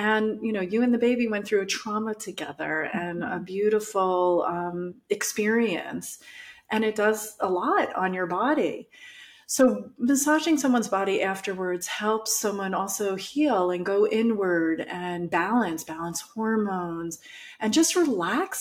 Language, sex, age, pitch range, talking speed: English, female, 30-49, 175-230 Hz, 140 wpm